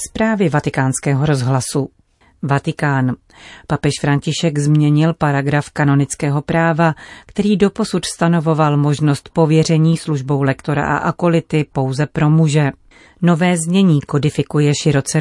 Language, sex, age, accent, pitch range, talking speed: Czech, female, 40-59, native, 145-170 Hz, 105 wpm